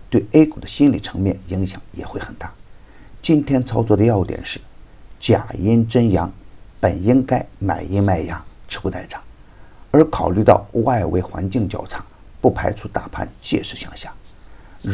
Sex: male